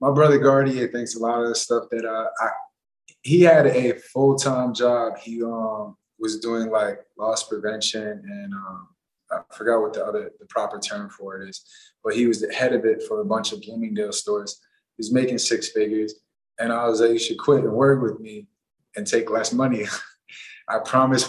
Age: 20-39